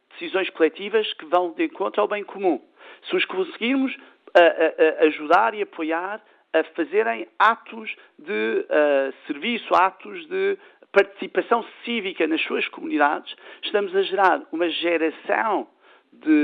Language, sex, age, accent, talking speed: Portuguese, male, 50-69, Brazilian, 135 wpm